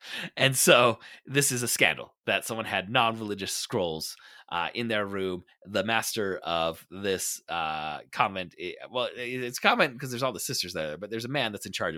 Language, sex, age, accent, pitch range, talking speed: English, male, 30-49, American, 95-130 Hz, 185 wpm